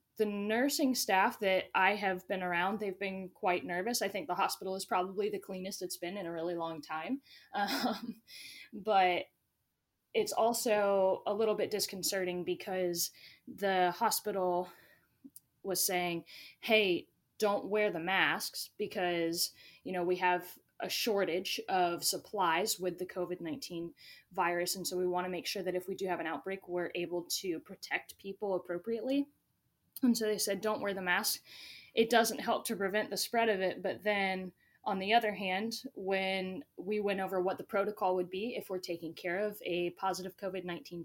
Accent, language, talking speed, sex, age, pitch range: American, English, 170 wpm, female, 10-29, 180-215 Hz